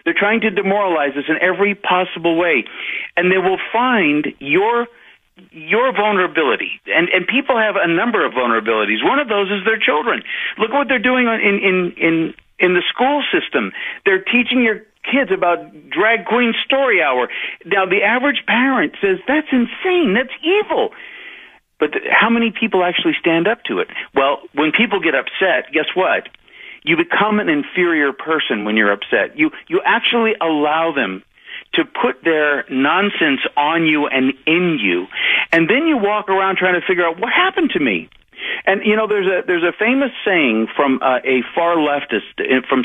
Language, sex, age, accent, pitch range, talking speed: English, male, 50-69, American, 165-245 Hz, 175 wpm